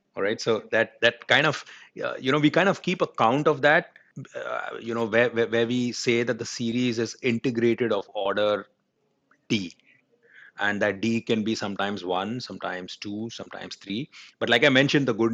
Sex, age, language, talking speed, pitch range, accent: male, 30-49, English, 190 wpm, 100-120 Hz, Indian